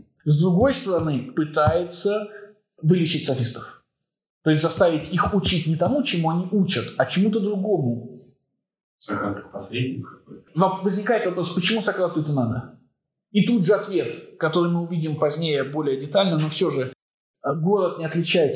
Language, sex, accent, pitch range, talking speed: Russian, male, native, 130-190 Hz, 140 wpm